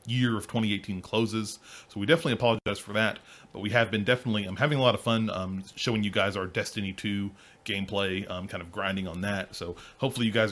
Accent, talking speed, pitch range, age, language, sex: American, 220 wpm, 100-120 Hz, 30-49, English, male